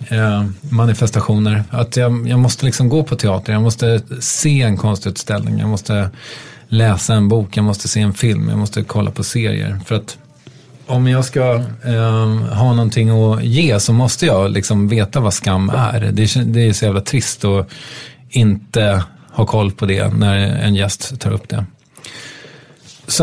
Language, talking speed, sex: English, 175 wpm, male